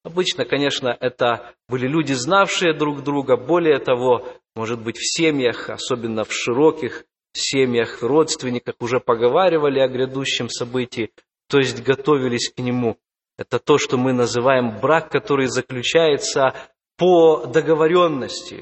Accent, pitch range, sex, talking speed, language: native, 125-165 Hz, male, 125 wpm, Russian